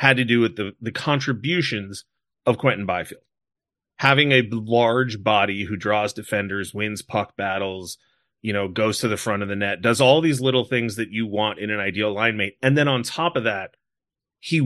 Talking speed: 200 wpm